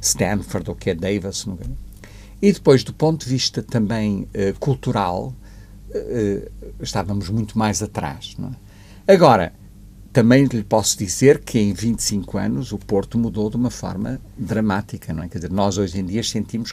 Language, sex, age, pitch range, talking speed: Portuguese, male, 50-69, 100-120 Hz, 170 wpm